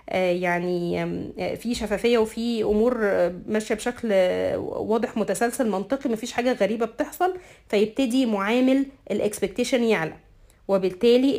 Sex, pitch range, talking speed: female, 195-260 Hz, 100 wpm